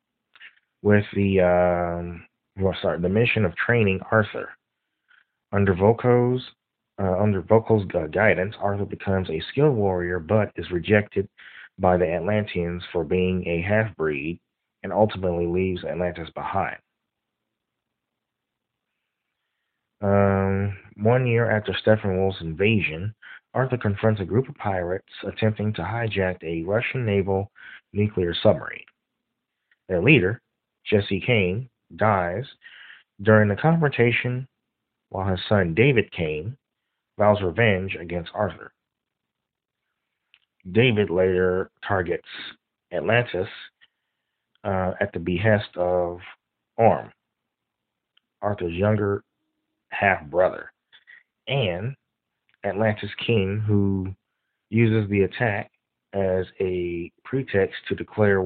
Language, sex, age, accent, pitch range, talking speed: English, male, 30-49, American, 90-110 Hz, 100 wpm